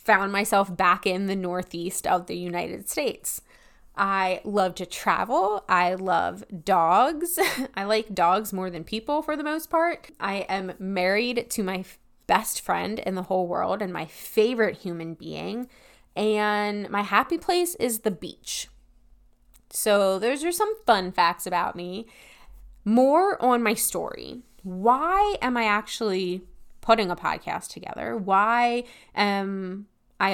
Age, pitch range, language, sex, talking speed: 20-39, 185-245 Hz, English, female, 145 wpm